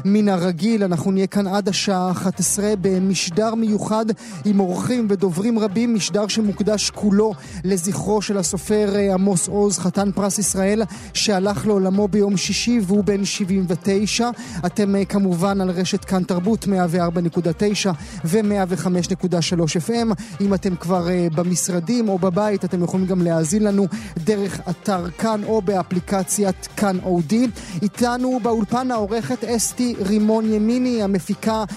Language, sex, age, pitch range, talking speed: Hebrew, male, 30-49, 190-215 Hz, 125 wpm